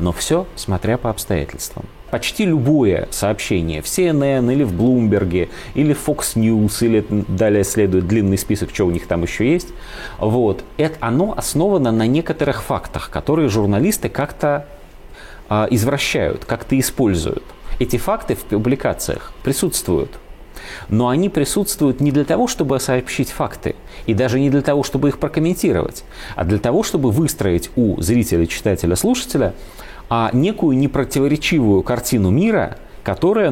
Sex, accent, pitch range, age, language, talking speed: male, native, 100-145 Hz, 30-49, Russian, 140 wpm